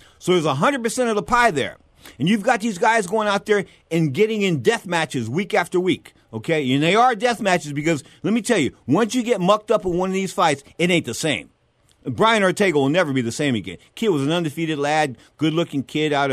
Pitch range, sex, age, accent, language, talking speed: 150-220 Hz, male, 50-69, American, English, 230 wpm